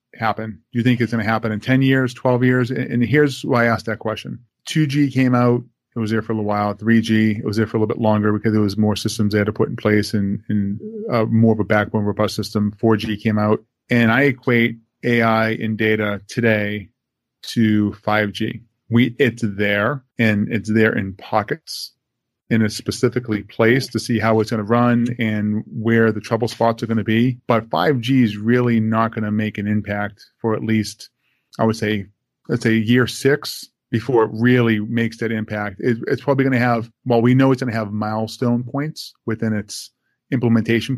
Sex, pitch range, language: male, 105-120 Hz, English